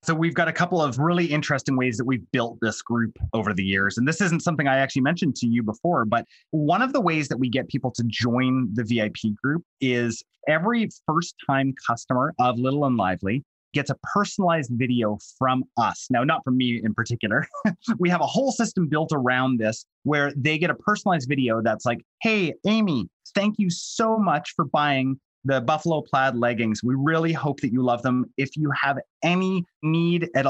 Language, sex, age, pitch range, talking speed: English, male, 30-49, 125-165 Hz, 205 wpm